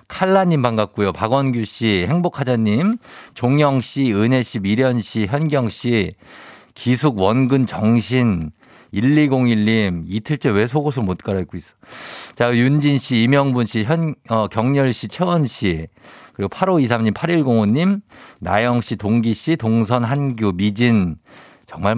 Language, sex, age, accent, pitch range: Korean, male, 50-69, native, 105-140 Hz